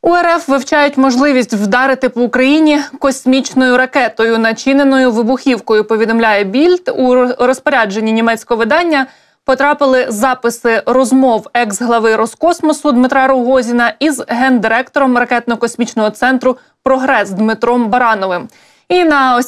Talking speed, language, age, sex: 110 wpm, Ukrainian, 20-39, female